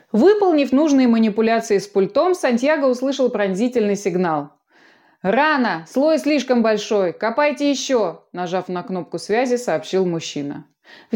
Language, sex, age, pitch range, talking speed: Russian, female, 20-39, 180-265 Hz, 120 wpm